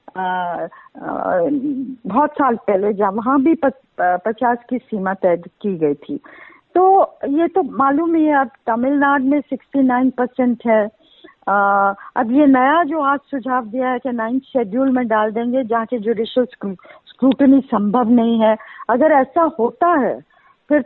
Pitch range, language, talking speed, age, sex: 220-295 Hz, Hindi, 145 wpm, 50-69, female